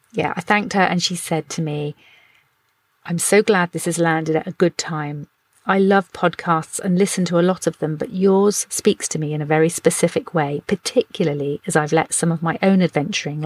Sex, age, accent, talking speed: female, 40-59, British, 215 wpm